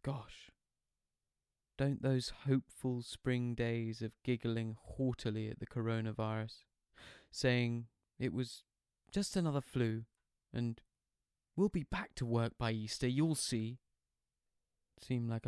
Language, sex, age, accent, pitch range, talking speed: English, male, 20-39, British, 110-140 Hz, 115 wpm